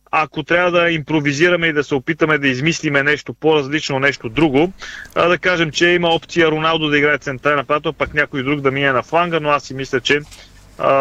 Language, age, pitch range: Bulgarian, 30-49, 130-155 Hz